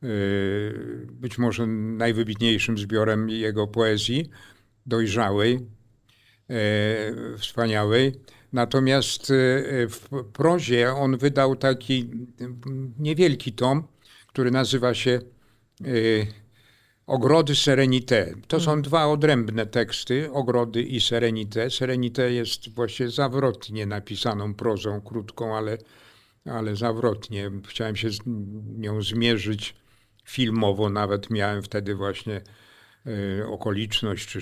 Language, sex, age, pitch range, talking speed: Polish, male, 50-69, 105-125 Hz, 90 wpm